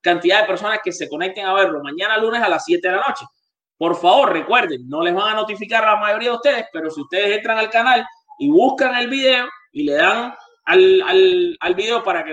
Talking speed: 235 wpm